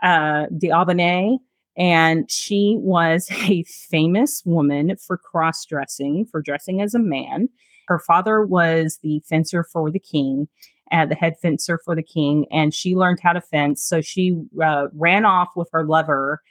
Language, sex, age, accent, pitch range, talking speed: English, female, 30-49, American, 160-225 Hz, 165 wpm